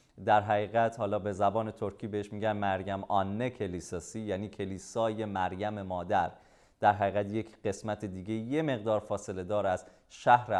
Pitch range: 100-140 Hz